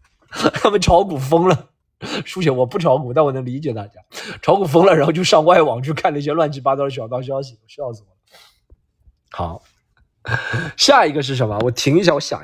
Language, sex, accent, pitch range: Chinese, male, native, 120-180 Hz